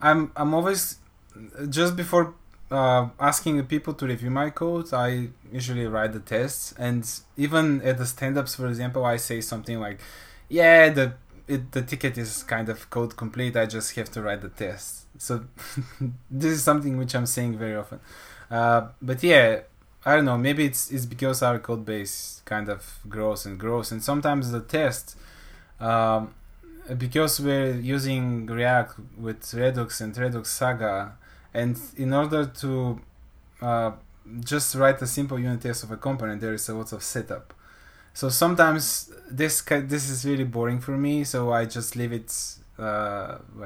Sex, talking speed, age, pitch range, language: male, 170 wpm, 20-39, 110-140 Hz, Bulgarian